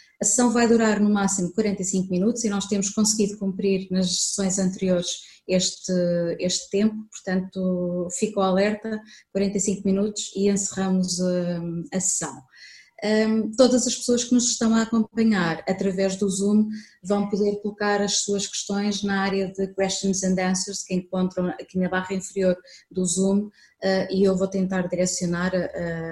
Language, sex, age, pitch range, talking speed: Portuguese, female, 20-39, 185-210 Hz, 150 wpm